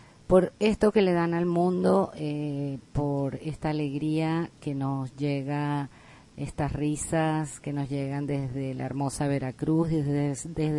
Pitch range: 140-165 Hz